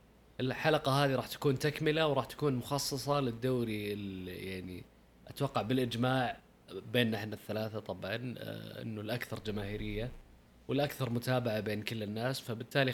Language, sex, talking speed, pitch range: Arabic, male, 120 wpm, 105-130 Hz